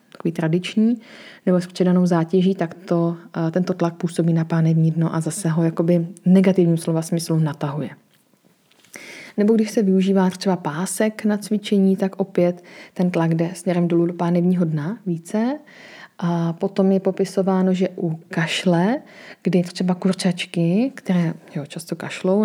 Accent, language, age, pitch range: native, Czech, 30-49, 170-190 Hz